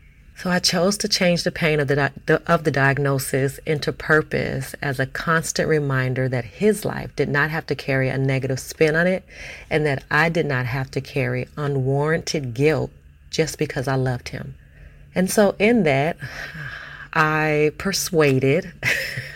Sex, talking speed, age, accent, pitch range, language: female, 165 wpm, 40-59, American, 130-155 Hz, English